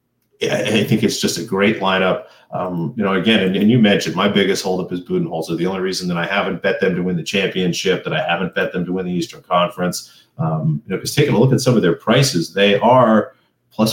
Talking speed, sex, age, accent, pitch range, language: 255 wpm, male, 30-49, American, 90-120 Hz, English